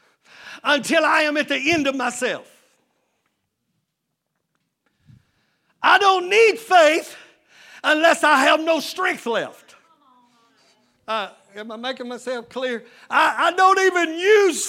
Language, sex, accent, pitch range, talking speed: English, male, American, 245-315 Hz, 120 wpm